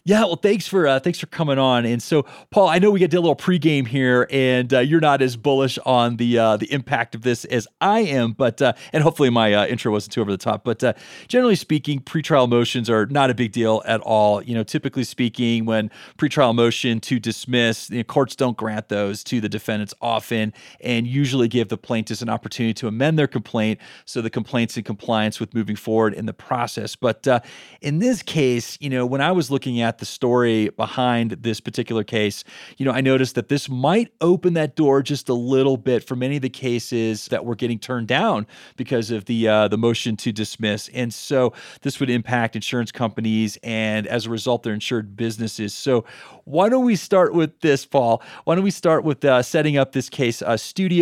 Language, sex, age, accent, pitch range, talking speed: English, male, 30-49, American, 115-140 Hz, 220 wpm